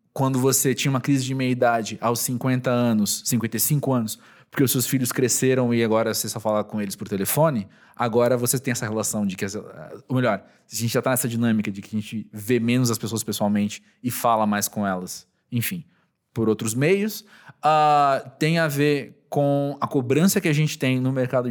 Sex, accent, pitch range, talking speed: male, Brazilian, 110-140 Hz, 200 wpm